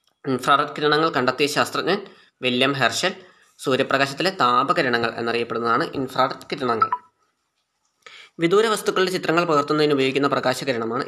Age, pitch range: 20-39, 130-160 Hz